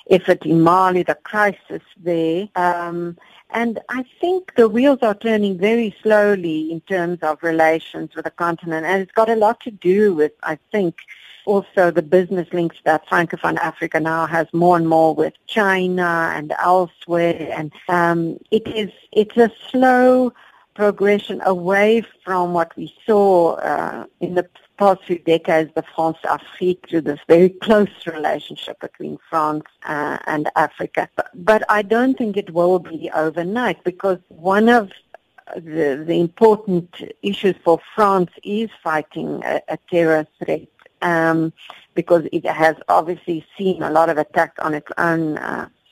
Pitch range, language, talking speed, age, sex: 165-205 Hz, English, 155 wpm, 50-69, female